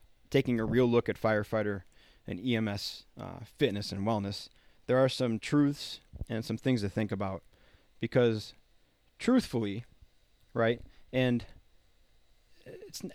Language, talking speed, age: English, 125 wpm, 30-49